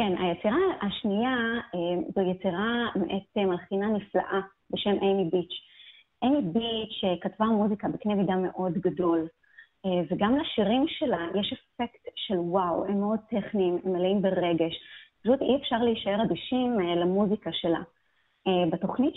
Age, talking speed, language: 30-49, 125 wpm, Hebrew